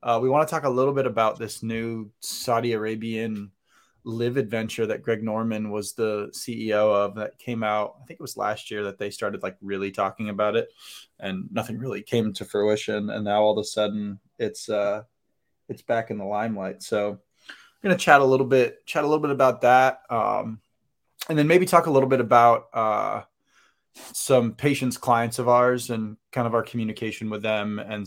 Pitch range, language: 105-130 Hz, English